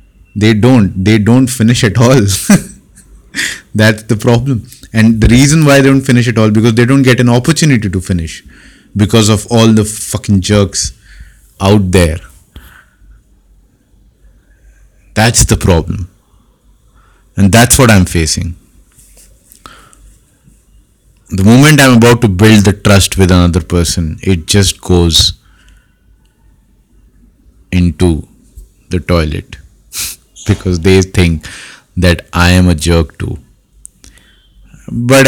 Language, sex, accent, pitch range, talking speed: English, male, Indian, 90-110 Hz, 120 wpm